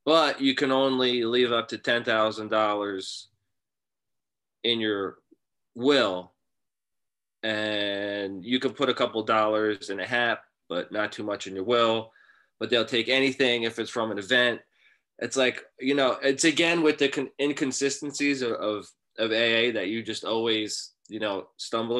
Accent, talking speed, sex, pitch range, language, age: American, 155 wpm, male, 110-135 Hz, English, 20-39